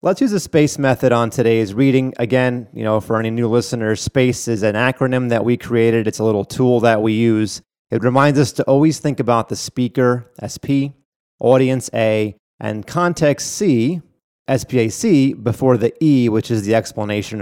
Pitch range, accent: 110-140 Hz, American